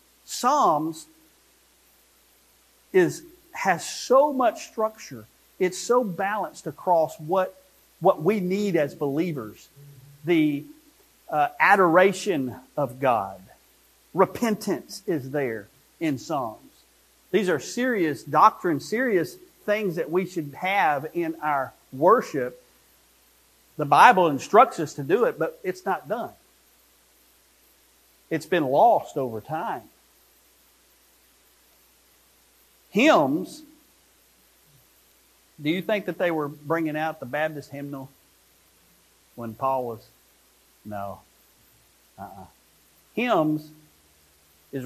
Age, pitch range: 40-59, 125-185 Hz